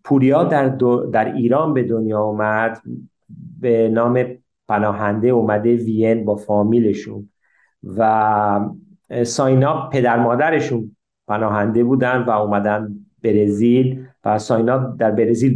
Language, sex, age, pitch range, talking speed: Persian, male, 50-69, 125-175 Hz, 105 wpm